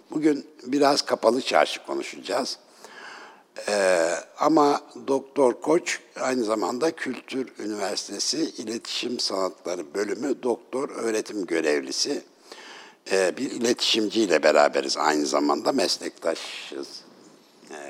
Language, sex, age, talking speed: Turkish, male, 60-79, 90 wpm